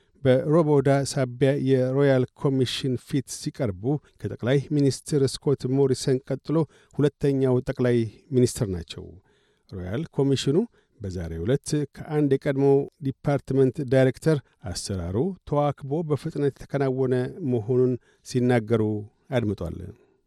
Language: Amharic